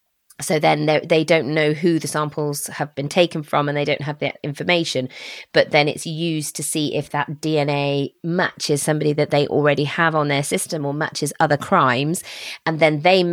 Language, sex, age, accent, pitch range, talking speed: English, female, 20-39, British, 140-165 Hz, 195 wpm